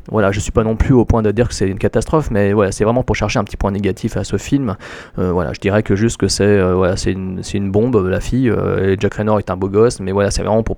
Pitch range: 100-120 Hz